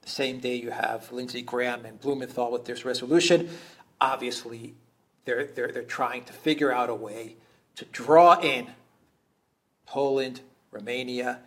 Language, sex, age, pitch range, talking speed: English, male, 50-69, 125-170 Hz, 140 wpm